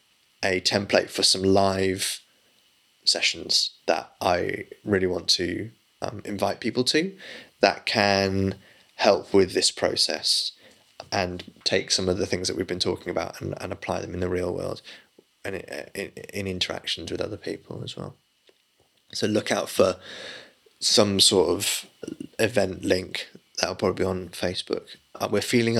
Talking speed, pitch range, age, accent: 155 wpm, 95-120 Hz, 20-39, British